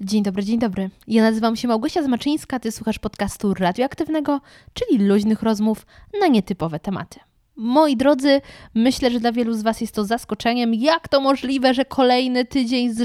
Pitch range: 220-275 Hz